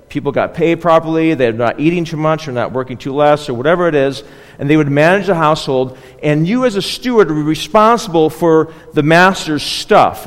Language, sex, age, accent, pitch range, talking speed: English, male, 40-59, American, 150-200 Hz, 205 wpm